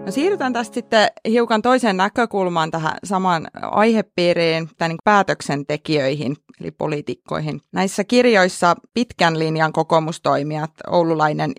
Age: 30-49